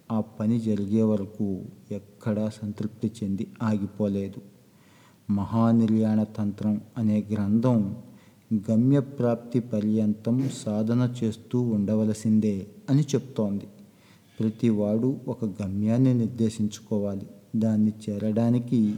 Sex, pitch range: male, 105-115 Hz